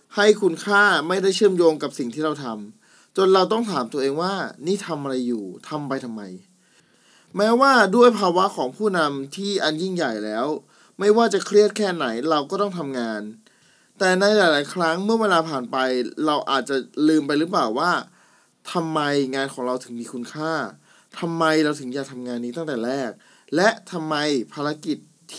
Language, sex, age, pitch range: Thai, male, 20-39, 135-195 Hz